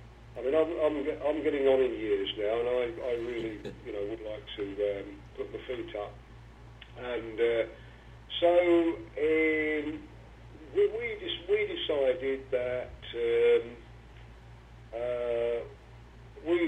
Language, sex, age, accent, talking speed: English, male, 50-69, British, 135 wpm